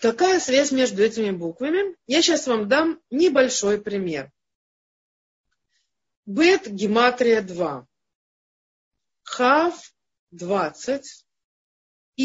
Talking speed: 80 wpm